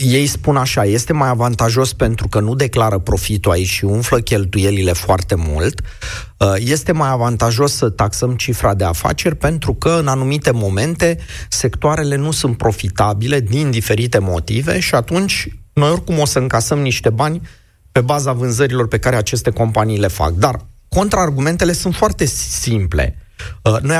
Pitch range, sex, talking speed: 105-150 Hz, male, 155 wpm